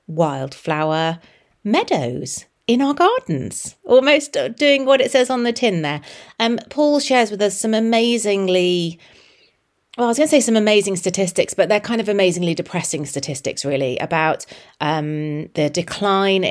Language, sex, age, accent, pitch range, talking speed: English, female, 30-49, British, 155-195 Hz, 150 wpm